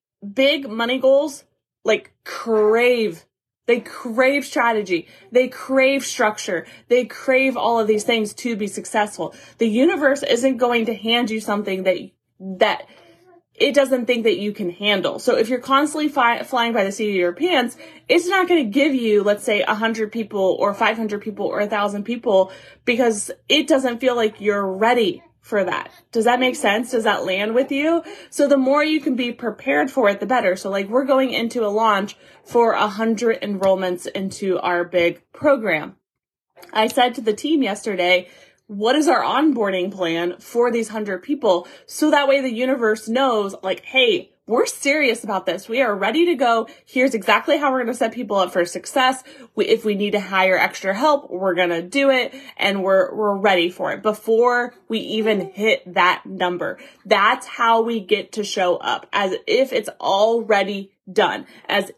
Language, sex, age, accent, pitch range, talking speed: English, female, 20-39, American, 200-265 Hz, 180 wpm